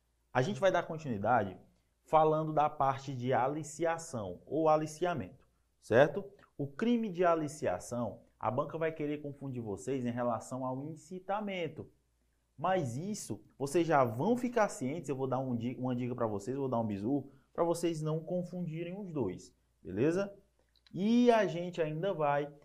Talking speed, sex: 155 wpm, male